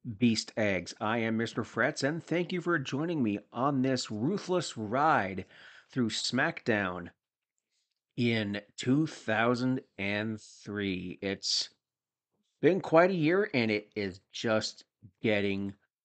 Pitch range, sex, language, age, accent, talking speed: 105-140 Hz, male, English, 40-59, American, 110 wpm